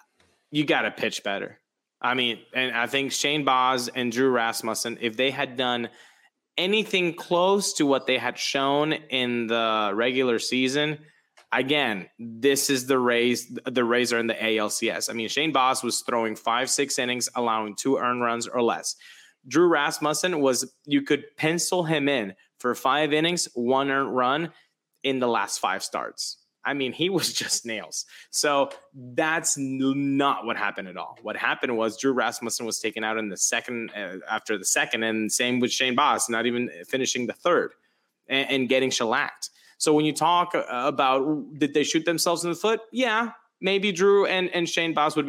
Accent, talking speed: American, 180 wpm